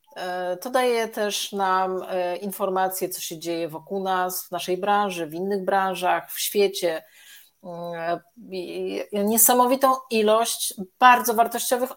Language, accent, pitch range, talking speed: Polish, native, 185-220 Hz, 110 wpm